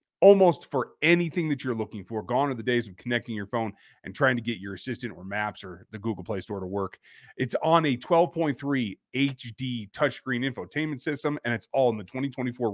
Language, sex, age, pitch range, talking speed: English, male, 30-49, 120-165 Hz, 205 wpm